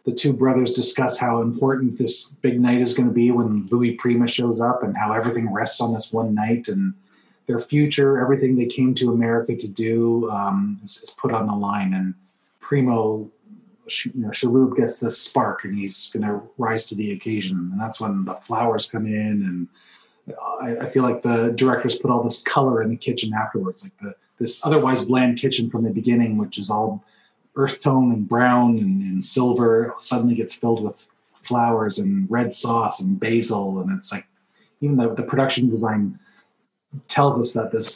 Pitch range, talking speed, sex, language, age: 110-130 Hz, 190 wpm, male, English, 30-49